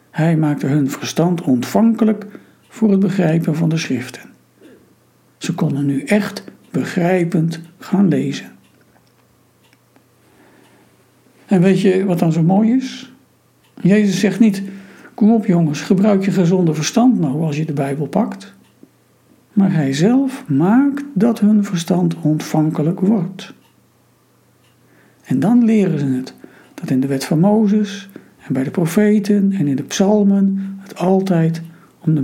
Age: 60-79